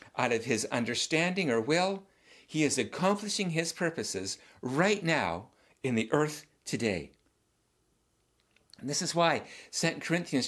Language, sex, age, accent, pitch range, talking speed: English, male, 50-69, American, 140-200 Hz, 130 wpm